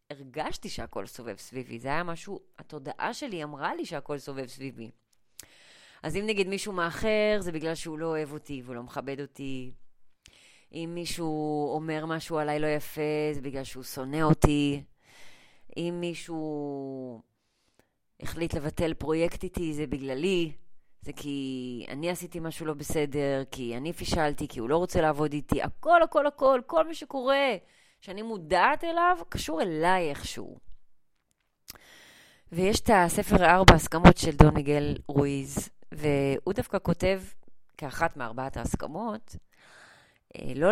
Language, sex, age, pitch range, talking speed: Hebrew, female, 20-39, 140-180 Hz, 140 wpm